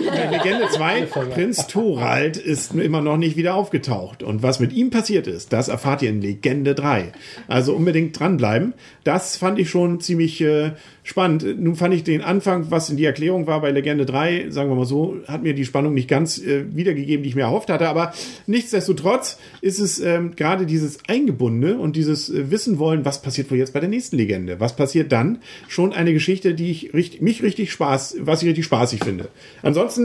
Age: 50-69